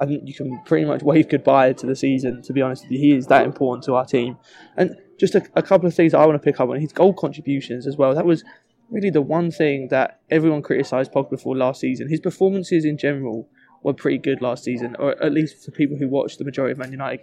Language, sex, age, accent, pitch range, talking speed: English, male, 20-39, British, 135-160 Hz, 260 wpm